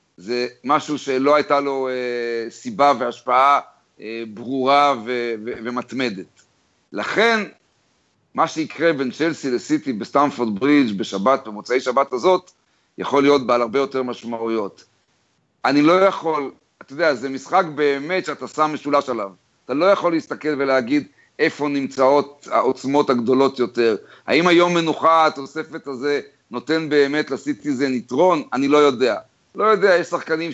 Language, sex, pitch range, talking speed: Hebrew, male, 125-160 Hz, 140 wpm